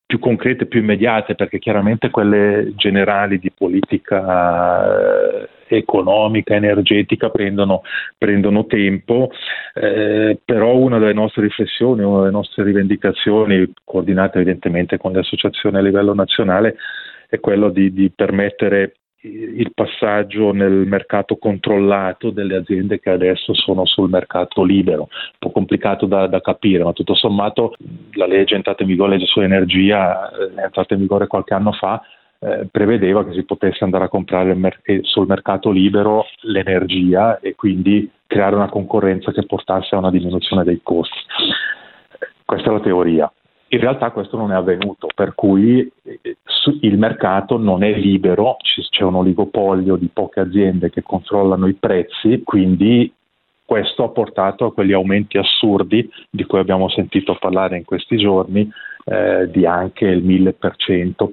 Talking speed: 140 wpm